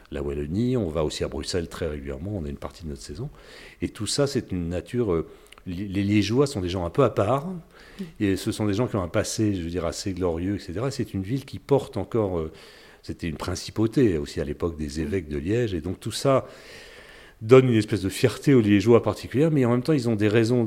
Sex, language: male, French